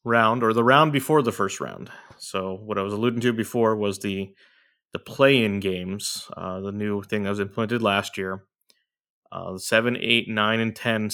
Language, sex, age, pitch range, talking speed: English, male, 20-39, 100-115 Hz, 195 wpm